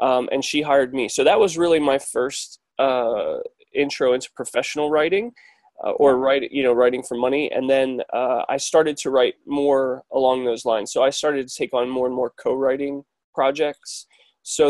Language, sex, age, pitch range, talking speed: English, male, 20-39, 130-170 Hz, 190 wpm